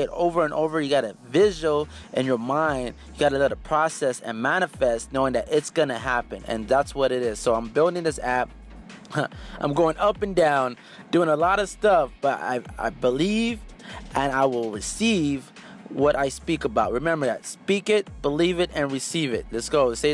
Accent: American